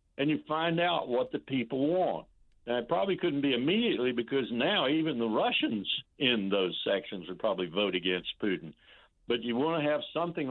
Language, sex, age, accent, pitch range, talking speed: English, male, 60-79, American, 105-150 Hz, 190 wpm